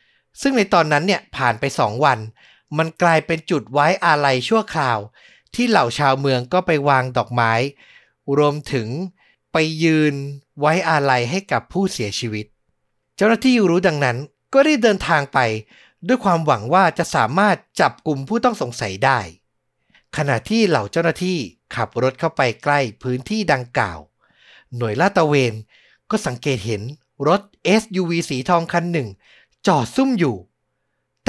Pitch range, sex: 130-185 Hz, male